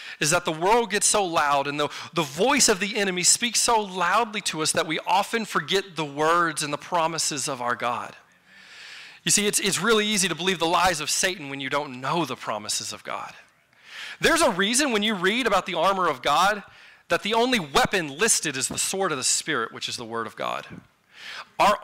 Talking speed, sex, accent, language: 220 wpm, male, American, English